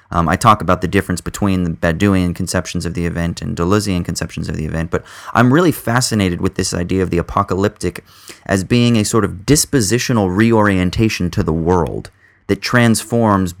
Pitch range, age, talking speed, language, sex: 90-110 Hz, 30-49, 180 wpm, English, male